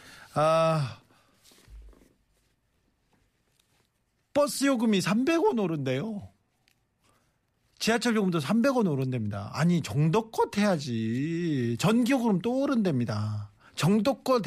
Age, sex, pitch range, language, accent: 40-59, male, 140-220 Hz, Korean, native